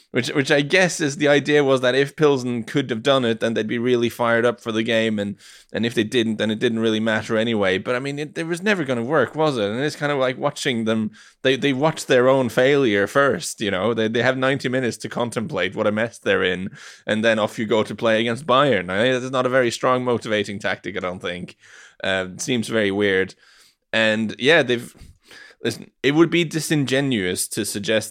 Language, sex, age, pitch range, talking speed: English, male, 20-39, 110-140 Hz, 240 wpm